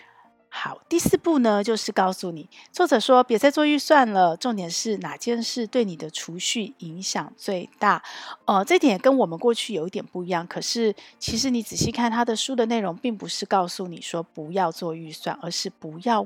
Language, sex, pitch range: Chinese, female, 180-250 Hz